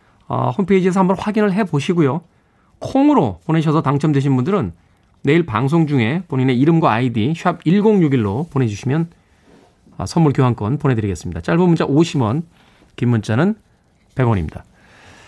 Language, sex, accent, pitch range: Korean, male, native, 105-165 Hz